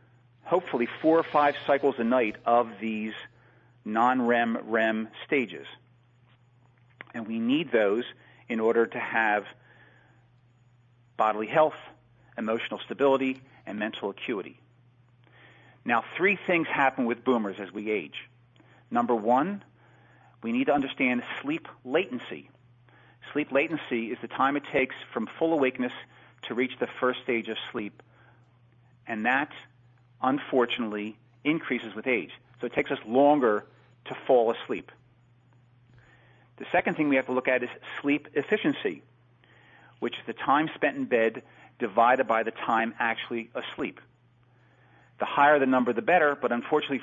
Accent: American